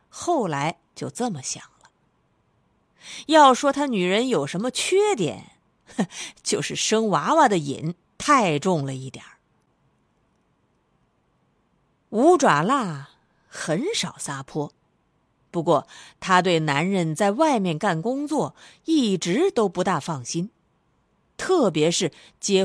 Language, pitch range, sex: Chinese, 160-255 Hz, female